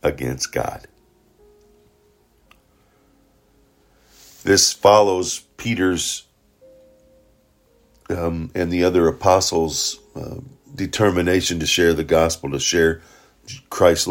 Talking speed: 80 wpm